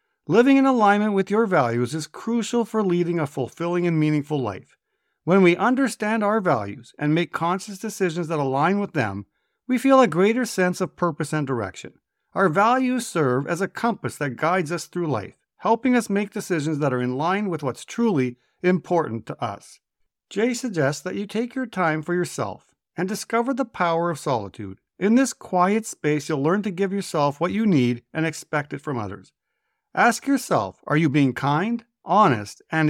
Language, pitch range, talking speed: English, 145-220 Hz, 185 wpm